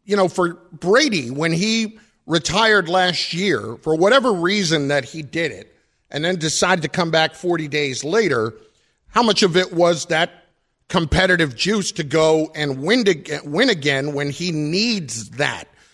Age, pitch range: 50-69, 145-185 Hz